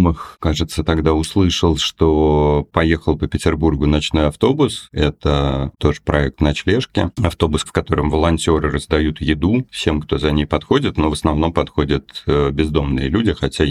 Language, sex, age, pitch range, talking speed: Russian, male, 40-59, 75-85 Hz, 140 wpm